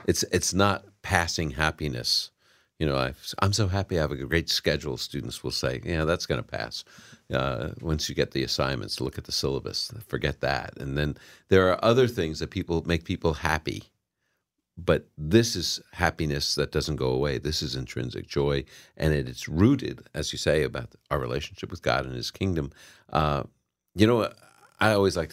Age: 50-69